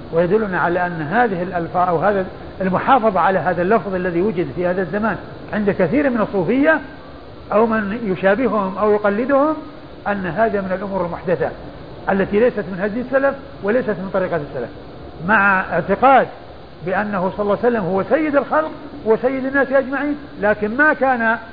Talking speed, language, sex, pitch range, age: 155 wpm, Arabic, male, 180-235 Hz, 50-69